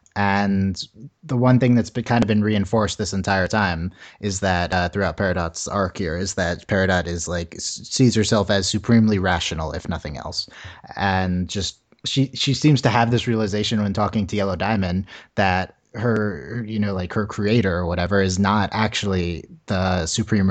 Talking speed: 180 wpm